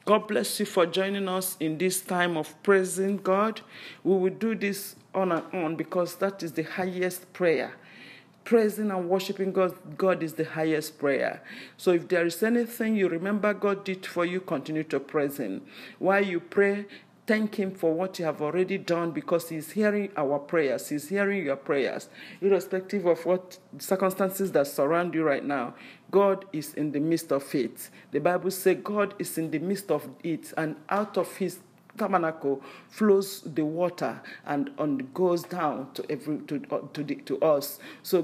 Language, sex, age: English, male, 50-69